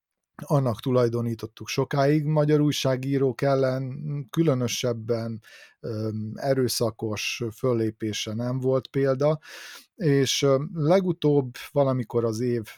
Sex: male